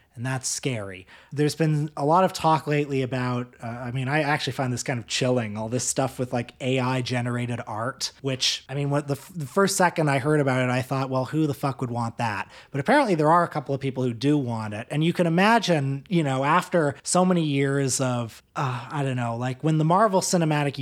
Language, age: English, 30-49